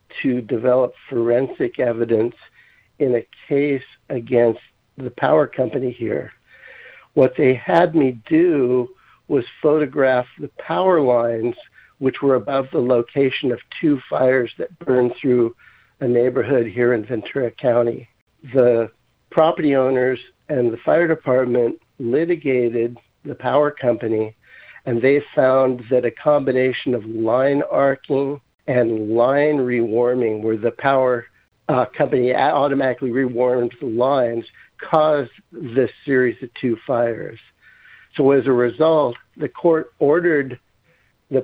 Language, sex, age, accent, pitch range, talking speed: English, male, 60-79, American, 120-140 Hz, 125 wpm